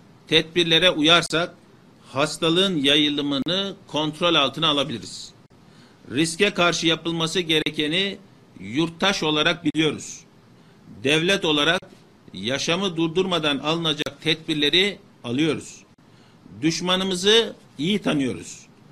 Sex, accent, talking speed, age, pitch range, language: male, native, 75 wpm, 60-79, 150-185 Hz, Turkish